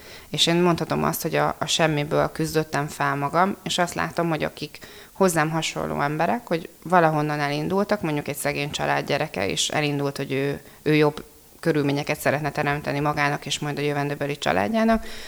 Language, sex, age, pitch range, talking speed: Hungarian, female, 30-49, 145-170 Hz, 160 wpm